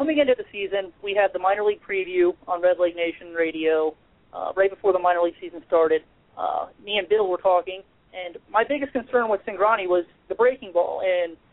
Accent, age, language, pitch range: American, 40-59, English, 175-215 Hz